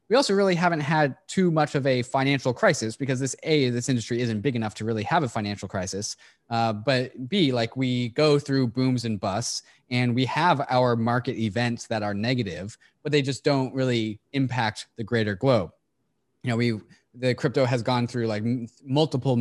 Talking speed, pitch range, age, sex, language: 200 wpm, 110-135 Hz, 20-39, male, English